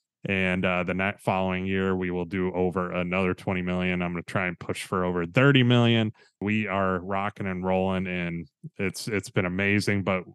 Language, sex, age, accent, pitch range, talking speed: English, male, 20-39, American, 90-110 Hz, 195 wpm